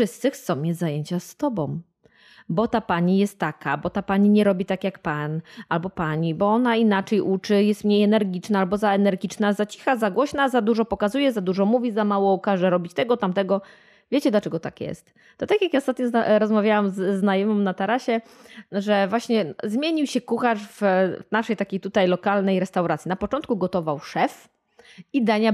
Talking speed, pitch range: 180 wpm, 190-240 Hz